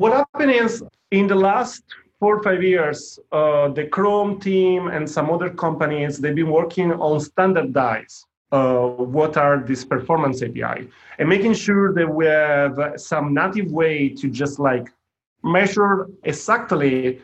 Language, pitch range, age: English, 140-195 Hz, 40-59